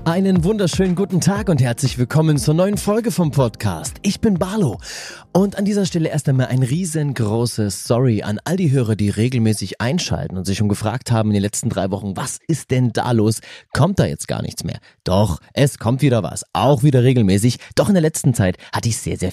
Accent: German